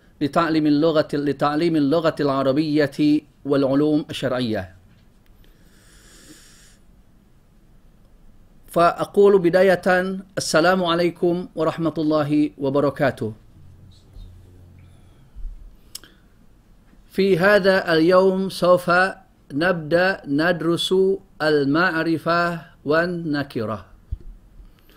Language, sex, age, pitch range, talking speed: Indonesian, male, 50-69, 140-180 Hz, 55 wpm